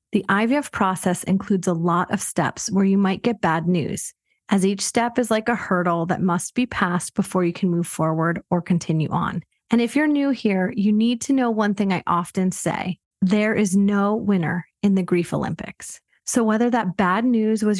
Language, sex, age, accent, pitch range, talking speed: English, female, 30-49, American, 185-220 Hz, 205 wpm